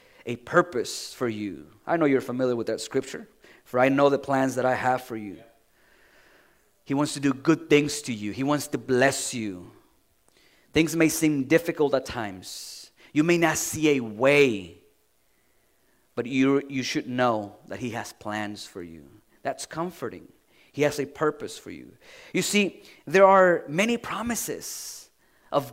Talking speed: 170 wpm